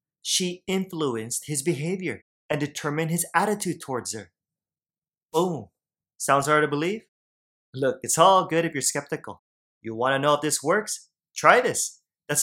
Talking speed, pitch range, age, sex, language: 155 wpm, 135-170 Hz, 30-49, male, English